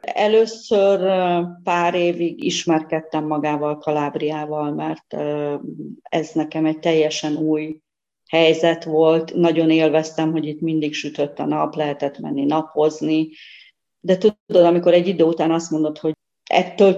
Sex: female